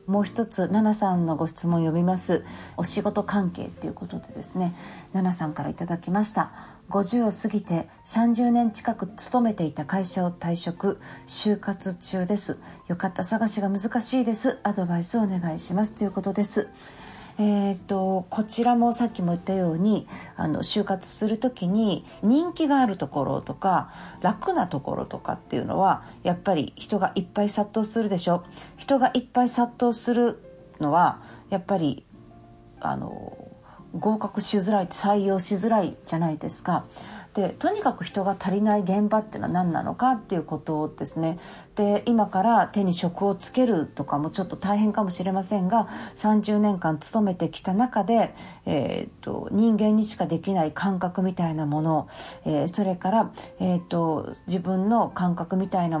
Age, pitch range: 40-59, 175-215 Hz